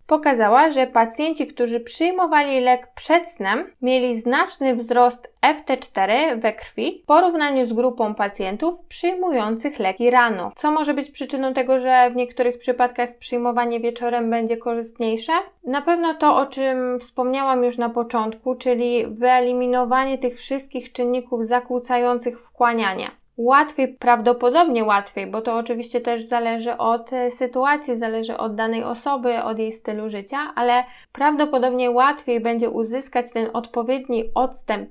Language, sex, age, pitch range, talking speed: Polish, female, 20-39, 235-265 Hz, 130 wpm